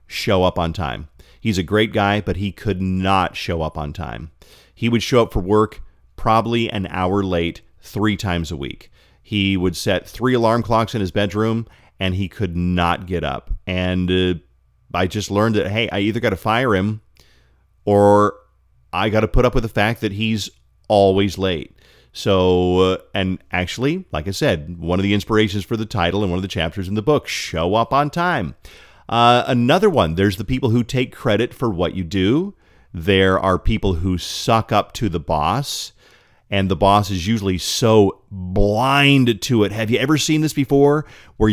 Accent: American